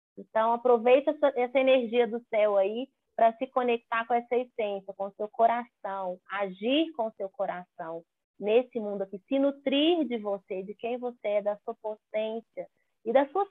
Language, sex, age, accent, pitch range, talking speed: Portuguese, female, 20-39, Brazilian, 205-255 Hz, 165 wpm